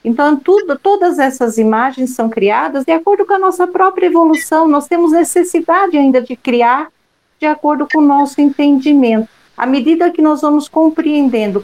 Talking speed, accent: 160 wpm, Brazilian